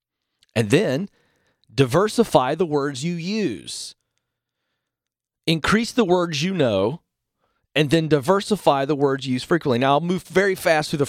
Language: English